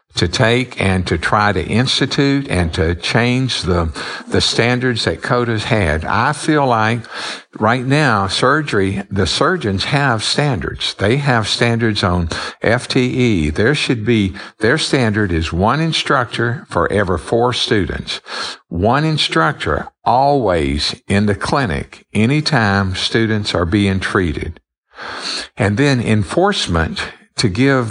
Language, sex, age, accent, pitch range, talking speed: English, male, 60-79, American, 95-130 Hz, 125 wpm